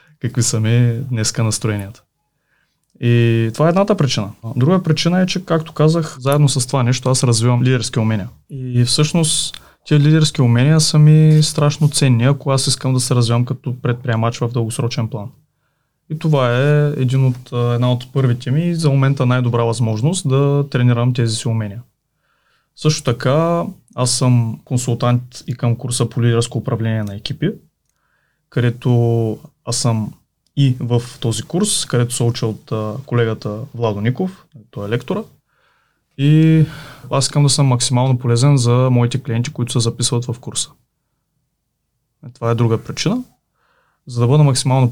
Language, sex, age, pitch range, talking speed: Bulgarian, male, 20-39, 120-150 Hz, 155 wpm